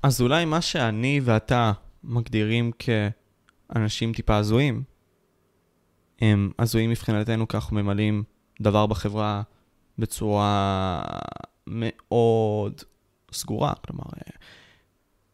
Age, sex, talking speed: 20-39, male, 80 wpm